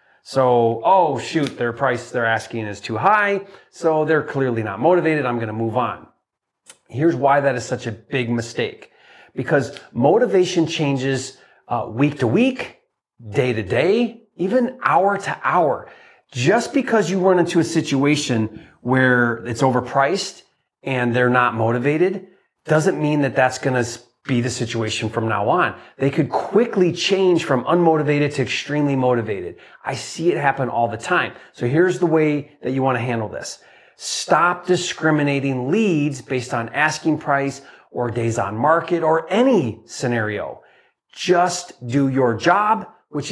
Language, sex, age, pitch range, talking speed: English, male, 30-49, 125-165 Hz, 155 wpm